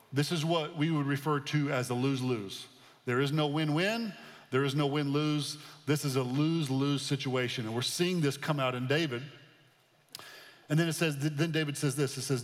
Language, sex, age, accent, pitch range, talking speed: English, male, 40-59, American, 130-155 Hz, 200 wpm